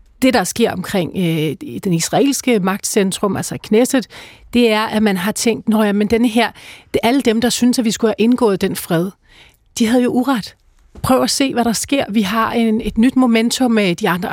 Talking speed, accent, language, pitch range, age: 210 wpm, native, Danish, 205-245 Hz, 40-59